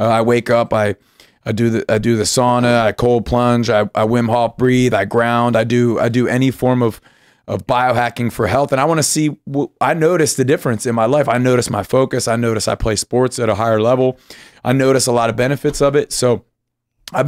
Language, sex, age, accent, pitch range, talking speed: English, male, 30-49, American, 115-130 Hz, 230 wpm